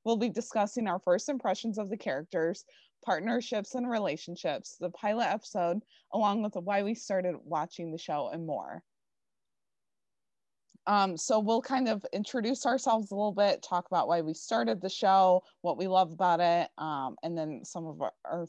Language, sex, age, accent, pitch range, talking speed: English, female, 20-39, American, 170-210 Hz, 170 wpm